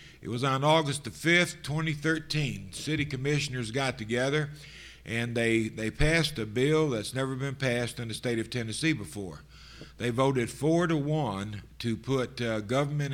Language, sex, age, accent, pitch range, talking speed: English, male, 50-69, American, 105-130 Hz, 165 wpm